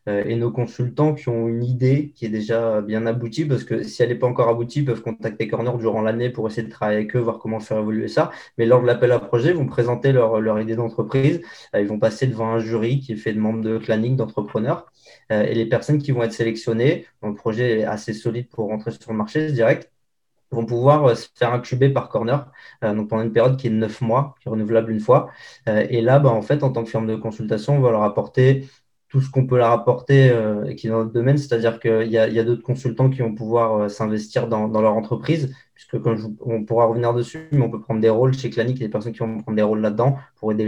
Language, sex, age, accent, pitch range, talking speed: French, male, 20-39, French, 110-125 Hz, 255 wpm